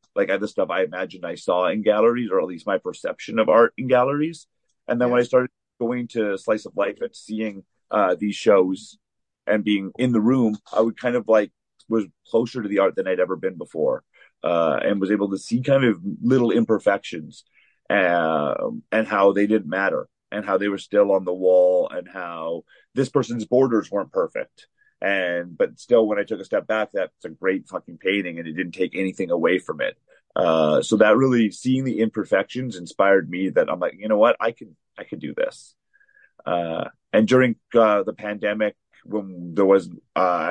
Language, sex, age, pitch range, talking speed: English, male, 40-59, 95-130 Hz, 205 wpm